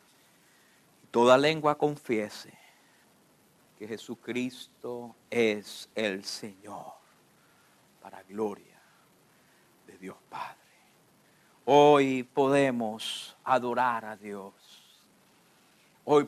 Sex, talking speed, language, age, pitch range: male, 70 wpm, English, 50-69, 150-195 Hz